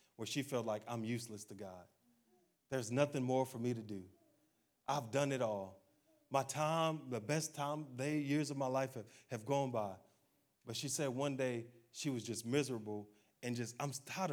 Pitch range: 125-170 Hz